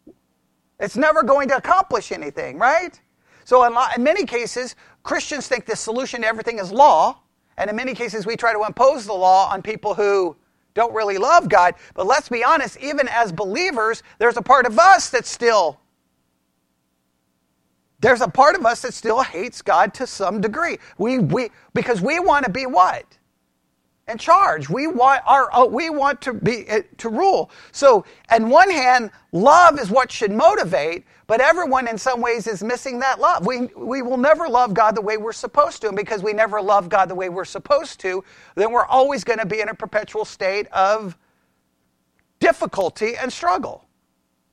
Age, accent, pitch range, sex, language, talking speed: 40-59, American, 190-265 Hz, male, English, 185 wpm